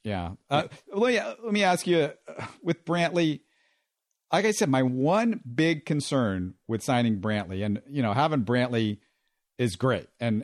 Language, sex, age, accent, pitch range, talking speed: English, male, 50-69, American, 110-140 Hz, 160 wpm